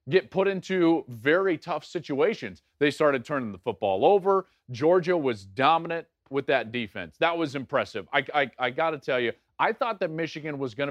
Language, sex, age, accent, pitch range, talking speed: English, male, 40-59, American, 125-170 Hz, 185 wpm